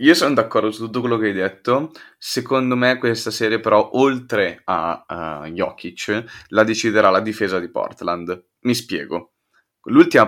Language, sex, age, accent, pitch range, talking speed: Italian, male, 20-39, native, 95-120 Hz, 160 wpm